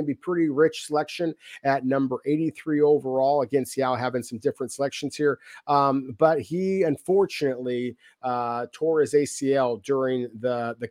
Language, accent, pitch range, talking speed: English, American, 125-155 Hz, 145 wpm